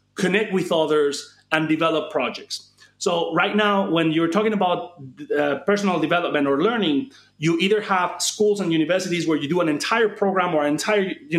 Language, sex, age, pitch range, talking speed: English, male, 30-49, 155-195 Hz, 180 wpm